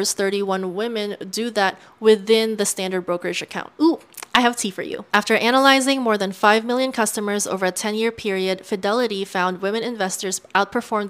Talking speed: 170 wpm